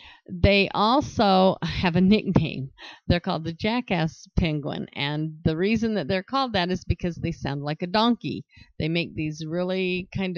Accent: American